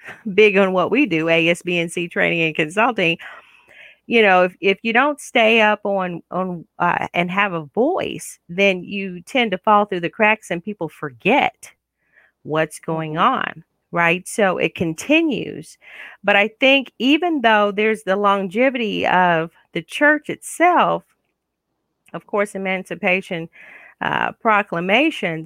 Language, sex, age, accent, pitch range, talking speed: English, female, 40-59, American, 175-230 Hz, 140 wpm